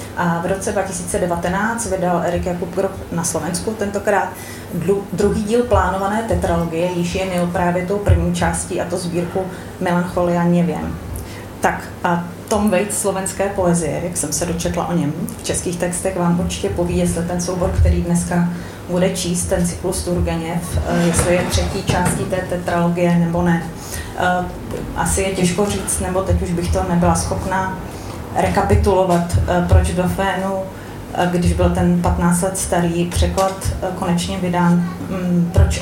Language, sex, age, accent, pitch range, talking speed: Czech, female, 30-49, native, 130-185 Hz, 145 wpm